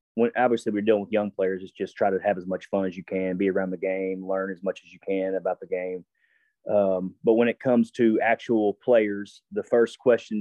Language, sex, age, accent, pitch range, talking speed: English, male, 30-49, American, 95-110 Hz, 240 wpm